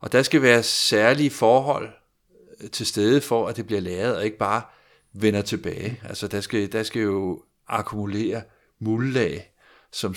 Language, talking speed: Danish, 160 wpm